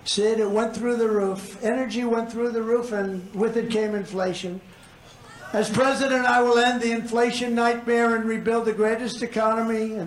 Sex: male